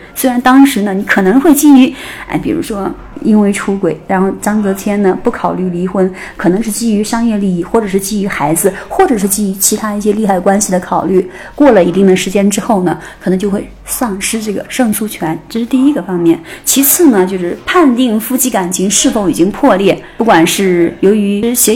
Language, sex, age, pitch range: Chinese, female, 30-49, 185-235 Hz